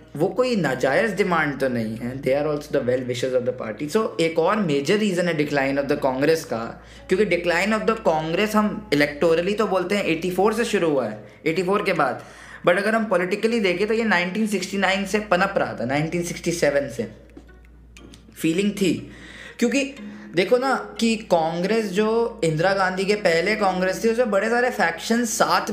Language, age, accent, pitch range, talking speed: Hindi, 20-39, native, 155-210 Hz, 180 wpm